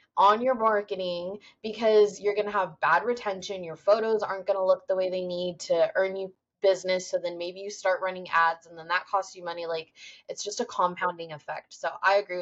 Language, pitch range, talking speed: English, 175-210 Hz, 215 wpm